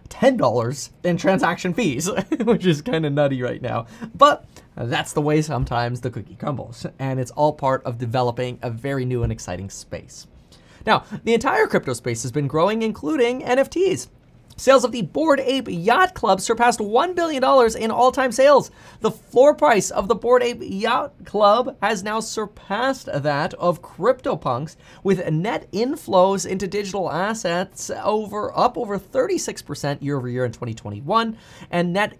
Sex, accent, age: male, American, 30-49